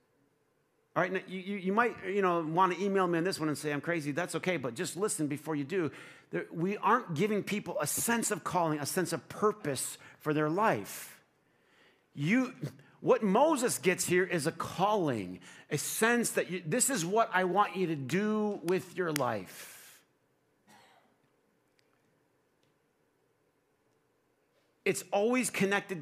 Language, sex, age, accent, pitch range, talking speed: English, male, 50-69, American, 145-190 Hz, 160 wpm